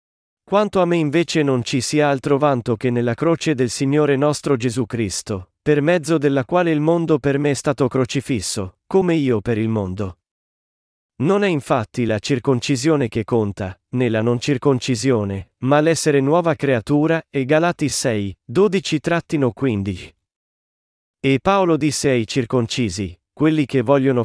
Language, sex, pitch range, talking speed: Italian, male, 120-155 Hz, 150 wpm